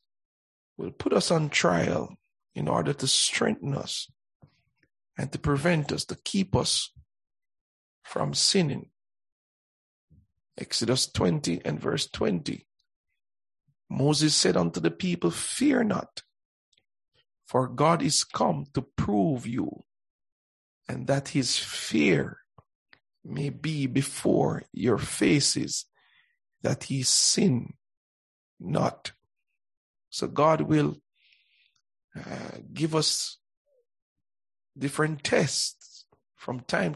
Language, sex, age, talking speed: English, male, 50-69, 100 wpm